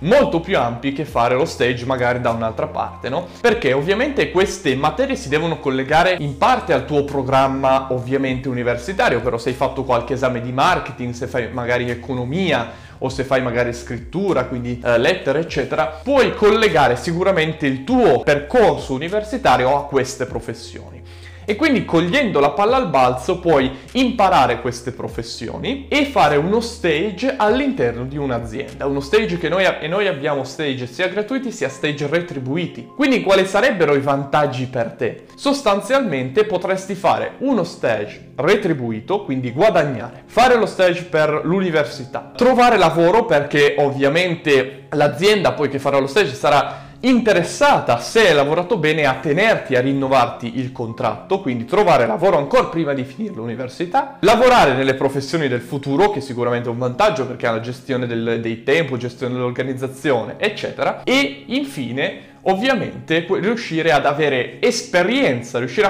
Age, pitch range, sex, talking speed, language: 20-39, 125-190 Hz, male, 150 wpm, Italian